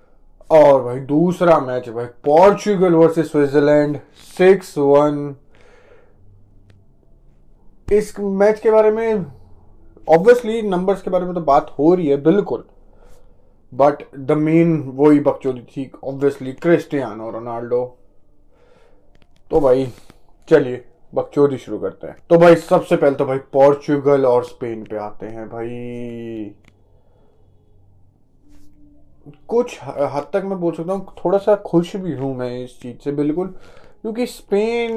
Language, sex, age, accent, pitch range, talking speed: Hindi, male, 20-39, native, 125-170 Hz, 130 wpm